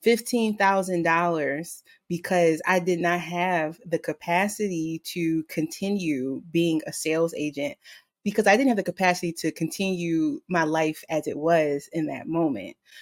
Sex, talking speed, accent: female, 135 wpm, American